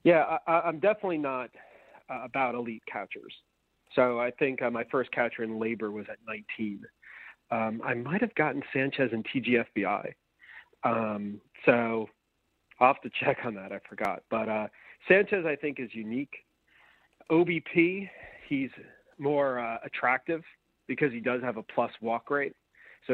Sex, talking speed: male, 155 wpm